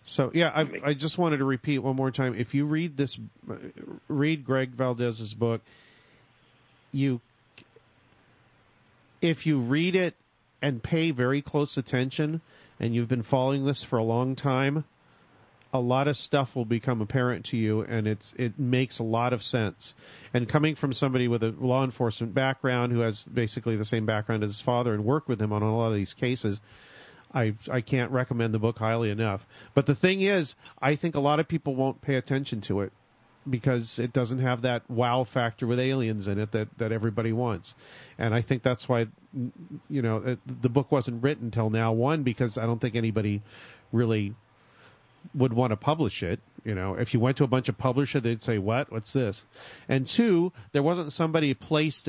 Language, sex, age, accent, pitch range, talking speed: English, male, 40-59, American, 115-140 Hz, 190 wpm